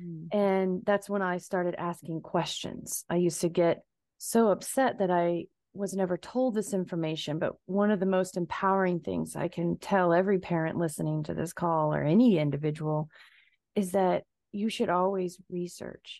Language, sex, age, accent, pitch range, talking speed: English, female, 30-49, American, 170-200 Hz, 165 wpm